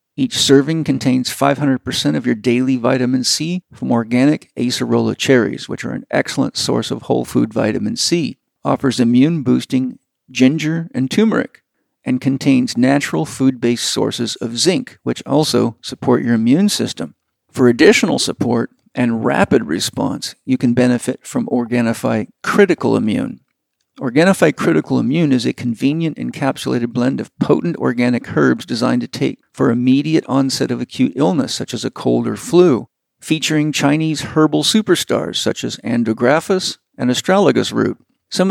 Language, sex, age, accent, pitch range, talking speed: English, male, 50-69, American, 125-155 Hz, 145 wpm